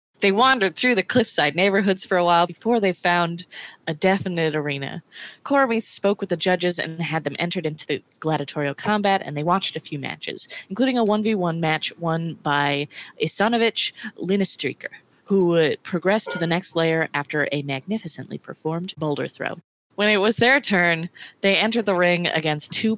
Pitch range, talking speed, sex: 155-195 Hz, 170 wpm, female